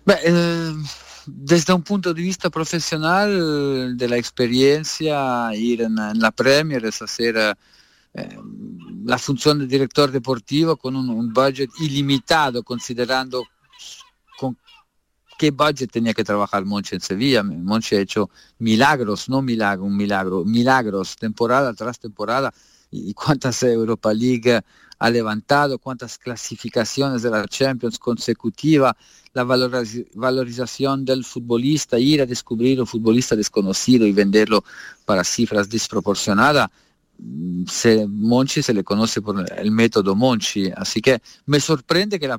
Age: 50-69